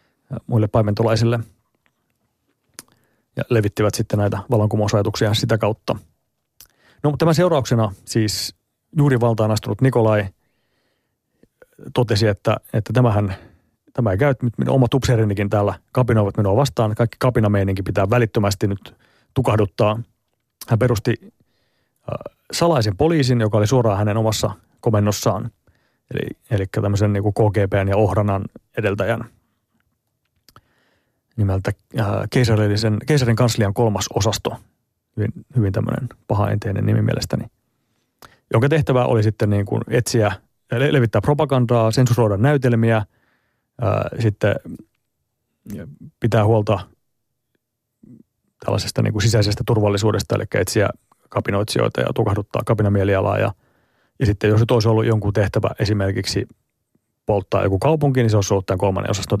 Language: Finnish